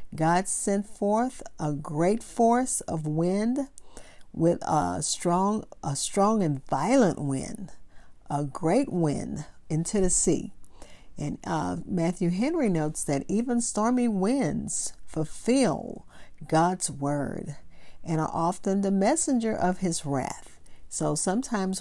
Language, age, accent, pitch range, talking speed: English, 50-69, American, 155-205 Hz, 120 wpm